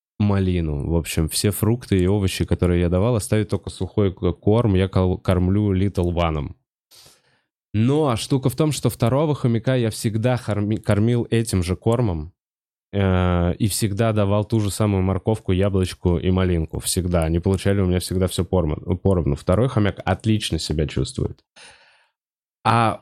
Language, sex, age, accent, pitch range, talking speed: Russian, male, 20-39, native, 90-110 Hz, 145 wpm